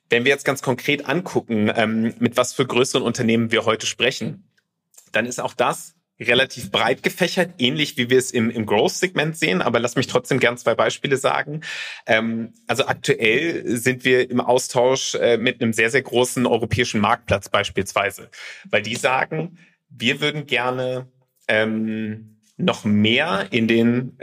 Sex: male